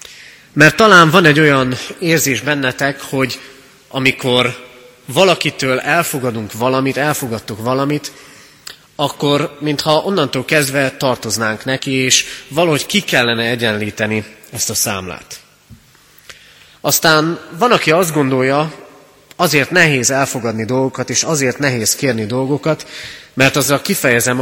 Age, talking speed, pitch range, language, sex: 30-49, 110 wpm, 115-150 Hz, Hungarian, male